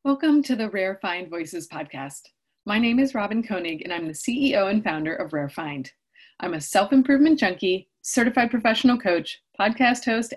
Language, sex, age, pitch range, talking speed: English, female, 30-49, 170-240 Hz, 175 wpm